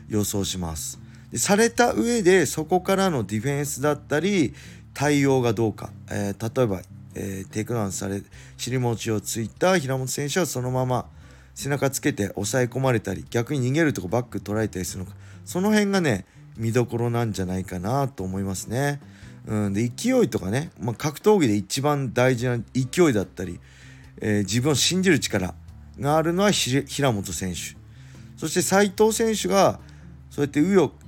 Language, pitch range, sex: Japanese, 100-145 Hz, male